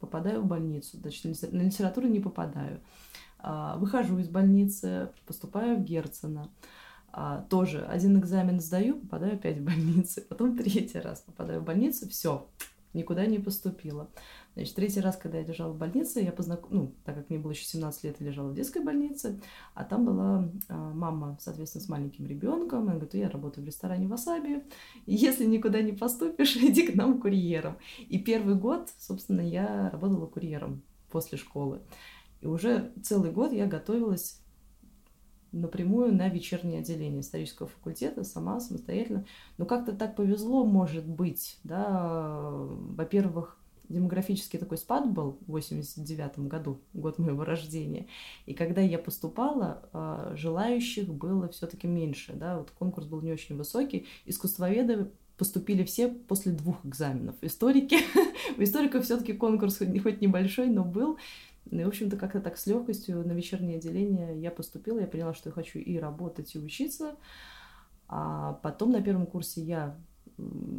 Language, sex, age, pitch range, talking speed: Russian, female, 20-39, 165-220 Hz, 155 wpm